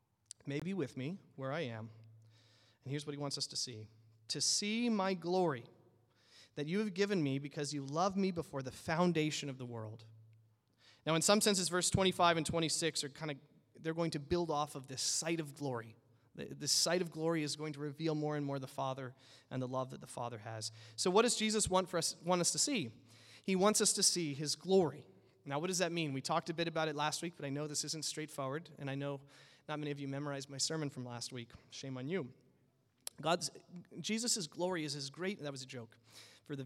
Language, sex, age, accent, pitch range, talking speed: English, male, 30-49, American, 130-185 Hz, 225 wpm